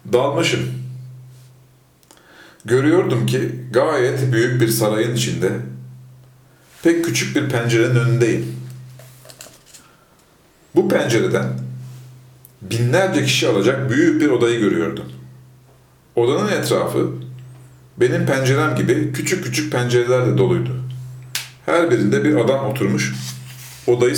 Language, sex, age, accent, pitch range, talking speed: Turkish, male, 40-59, native, 110-130 Hz, 90 wpm